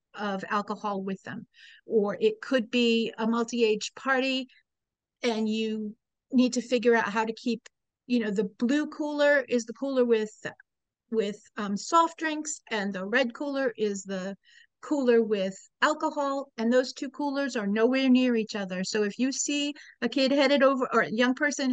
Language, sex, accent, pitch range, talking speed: English, female, American, 210-260 Hz, 175 wpm